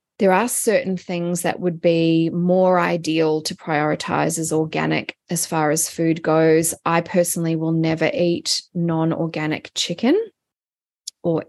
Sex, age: female, 20-39